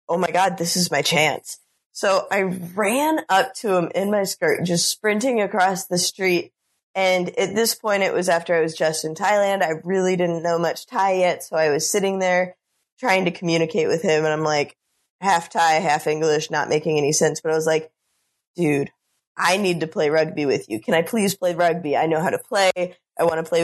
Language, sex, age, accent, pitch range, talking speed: English, female, 20-39, American, 155-185 Hz, 220 wpm